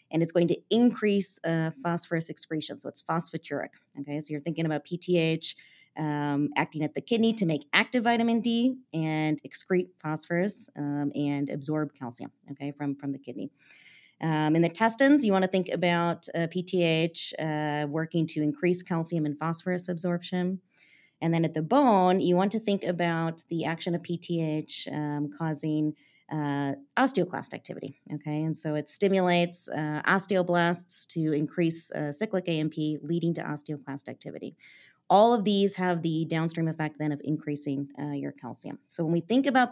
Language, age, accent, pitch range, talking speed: English, 30-49, American, 150-180 Hz, 170 wpm